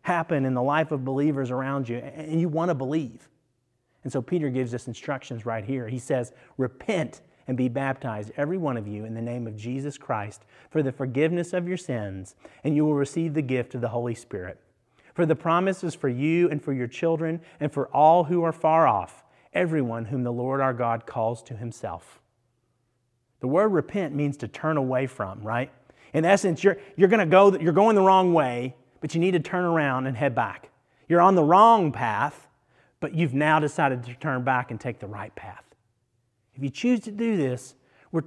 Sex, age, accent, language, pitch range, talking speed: male, 30-49, American, English, 125-160 Hz, 205 wpm